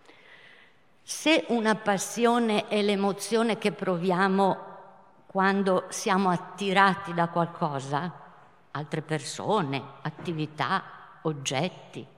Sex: female